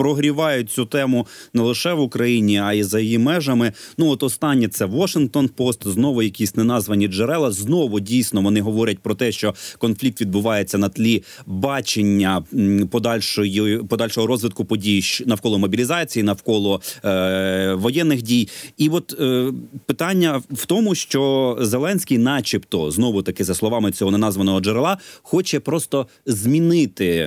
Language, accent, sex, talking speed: Ukrainian, native, male, 135 wpm